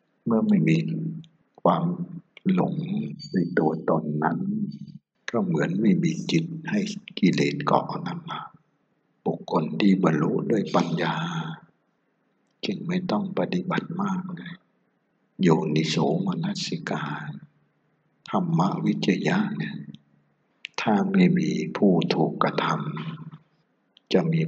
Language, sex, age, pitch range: Thai, male, 60-79, 150-190 Hz